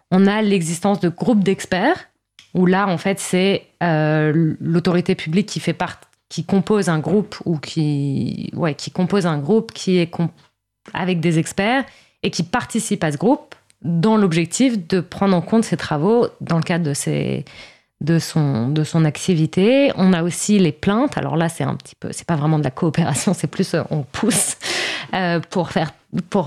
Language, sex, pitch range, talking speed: French, female, 160-195 Hz, 190 wpm